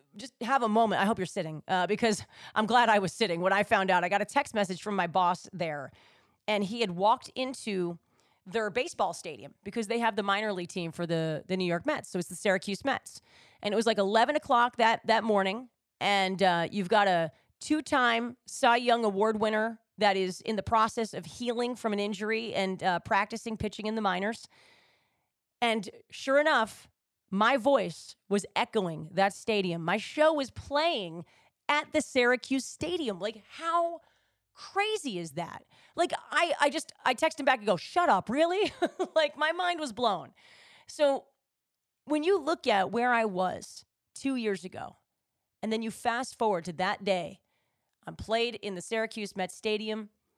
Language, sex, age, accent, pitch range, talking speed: English, female, 30-49, American, 190-245 Hz, 190 wpm